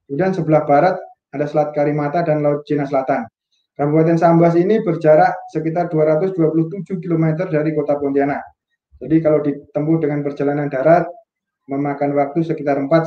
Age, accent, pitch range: 20-39, native, 145-170 Hz